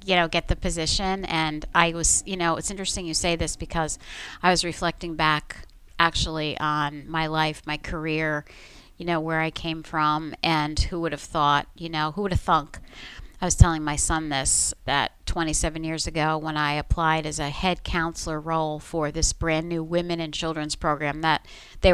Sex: female